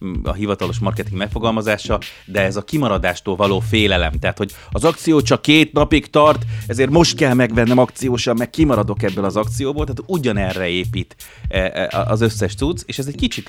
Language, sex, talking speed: Hungarian, male, 170 wpm